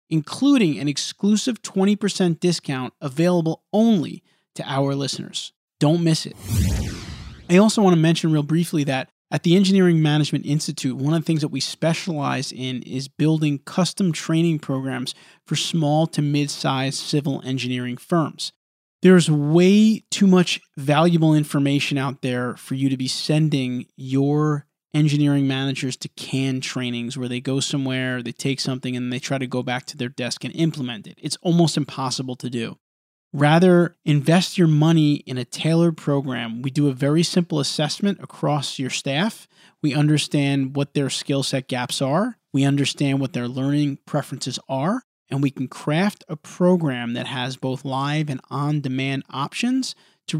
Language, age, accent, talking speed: English, 20-39, American, 160 wpm